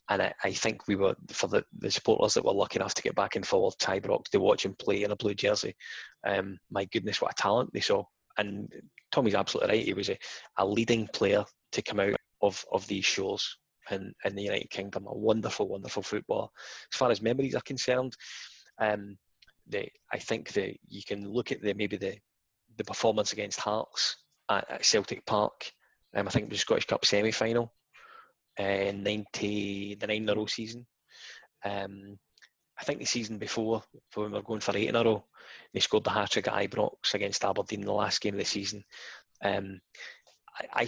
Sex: male